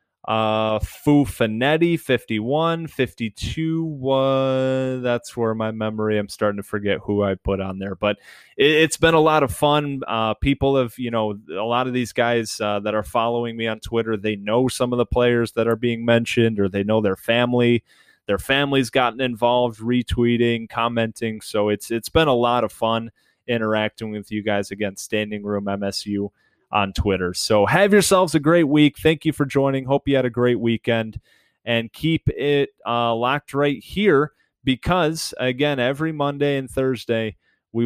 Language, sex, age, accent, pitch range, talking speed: English, male, 20-39, American, 105-135 Hz, 180 wpm